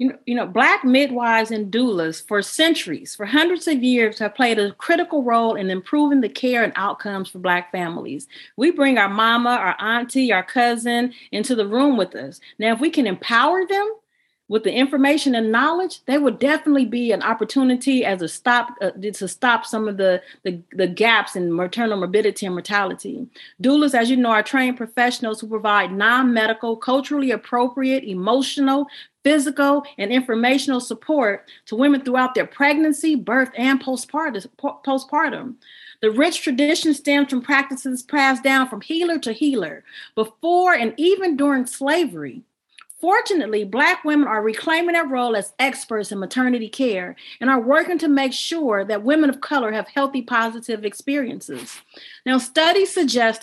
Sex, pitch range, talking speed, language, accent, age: female, 225-290 Hz, 160 wpm, English, American, 40-59